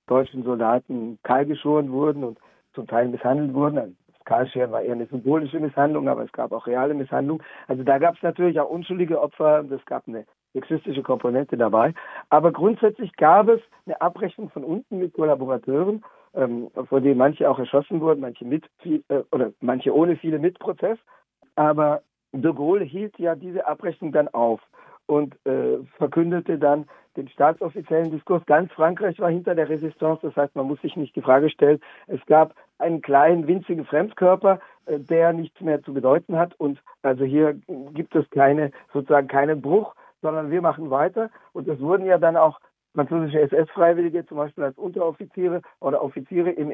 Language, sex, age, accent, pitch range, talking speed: German, male, 50-69, German, 135-170 Hz, 170 wpm